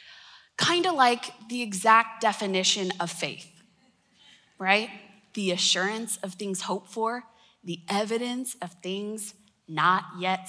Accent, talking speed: American, 120 wpm